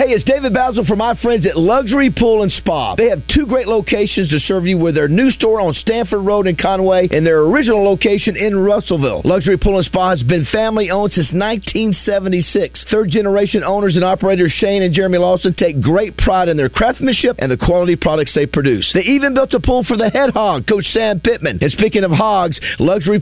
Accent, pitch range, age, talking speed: American, 185-230 Hz, 50-69, 215 wpm